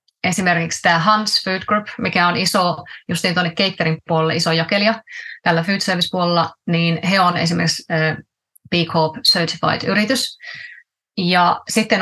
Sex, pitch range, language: female, 170-200 Hz, Finnish